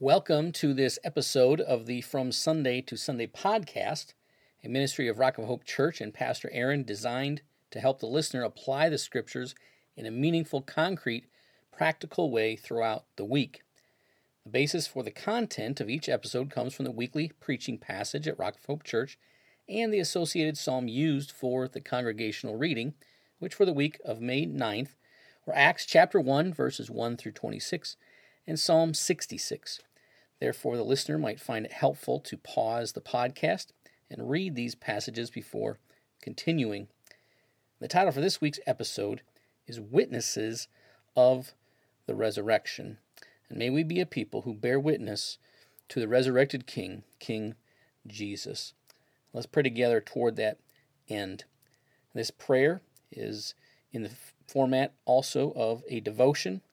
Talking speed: 150 wpm